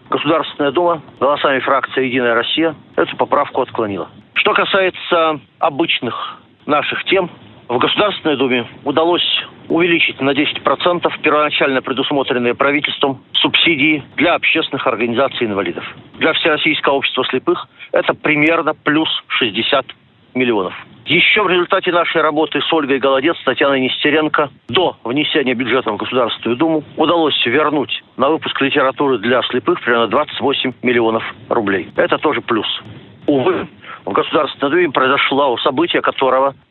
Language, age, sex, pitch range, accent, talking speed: Russian, 40-59, male, 130-165 Hz, native, 125 wpm